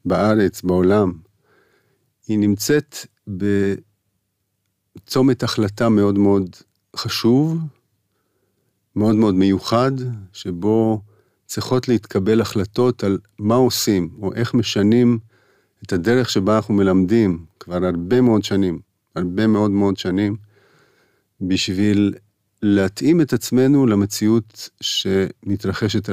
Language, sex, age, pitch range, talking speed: Hebrew, male, 50-69, 95-115 Hz, 95 wpm